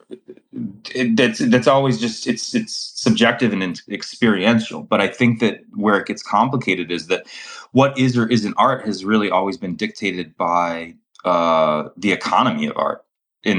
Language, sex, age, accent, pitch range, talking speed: English, male, 20-39, American, 80-125 Hz, 170 wpm